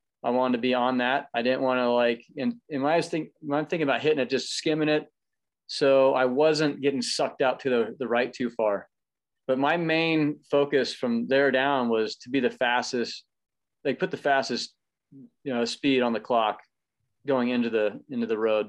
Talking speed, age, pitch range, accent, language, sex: 215 wpm, 30-49, 125-145 Hz, American, English, male